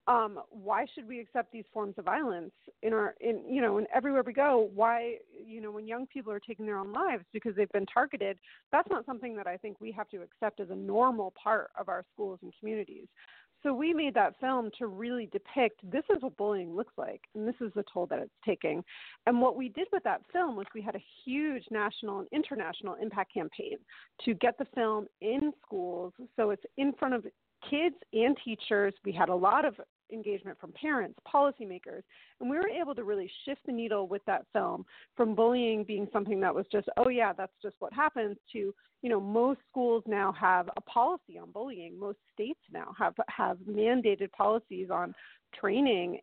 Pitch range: 205-260 Hz